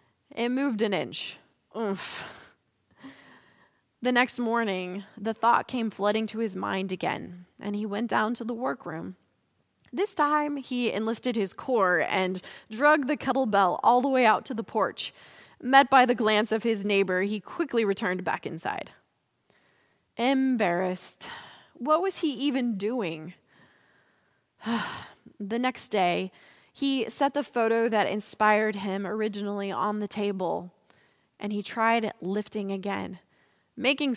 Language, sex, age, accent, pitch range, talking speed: English, female, 20-39, American, 195-250 Hz, 135 wpm